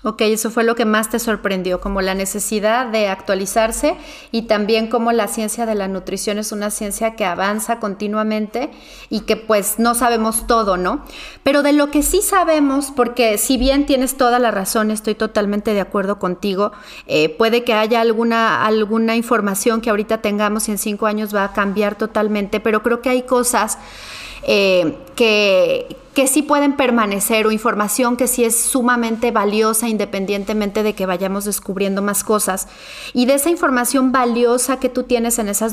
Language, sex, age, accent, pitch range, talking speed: Spanish, female, 30-49, Mexican, 205-240 Hz, 175 wpm